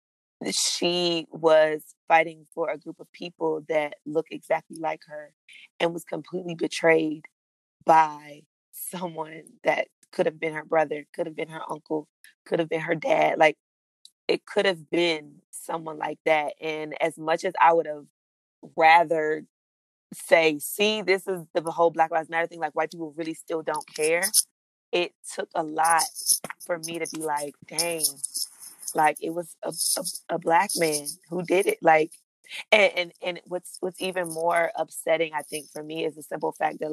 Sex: female